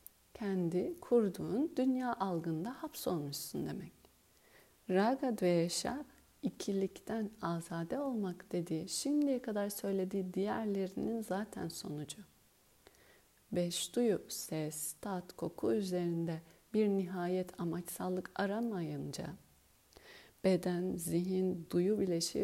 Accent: native